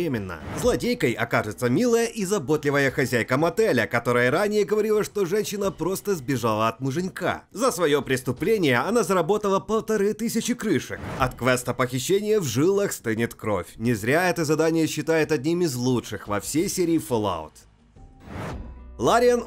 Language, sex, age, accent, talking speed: Russian, male, 30-49, native, 135 wpm